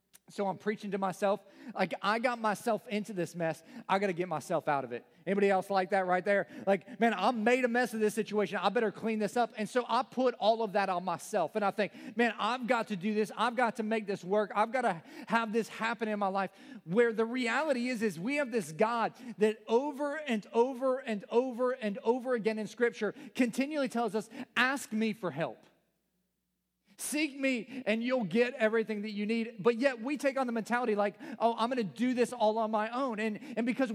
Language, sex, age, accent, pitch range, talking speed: English, male, 40-59, American, 195-240 Hz, 230 wpm